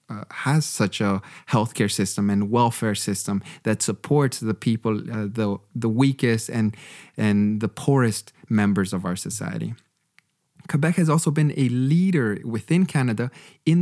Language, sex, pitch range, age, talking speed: English, male, 115-155 Hz, 30-49, 150 wpm